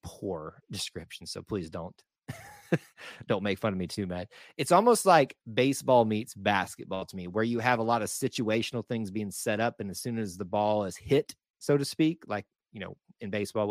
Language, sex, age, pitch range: English, male, 30-49, 100-130 Hz